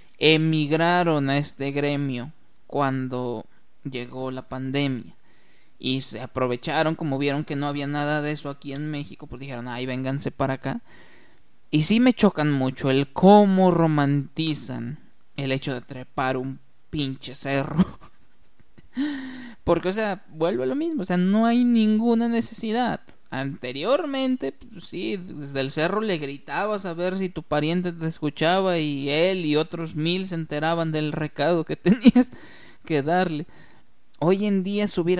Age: 20-39